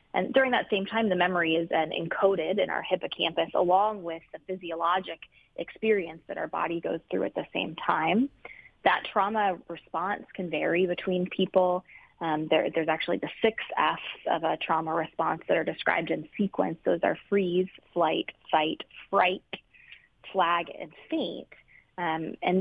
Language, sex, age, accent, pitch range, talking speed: English, female, 20-39, American, 165-190 Hz, 160 wpm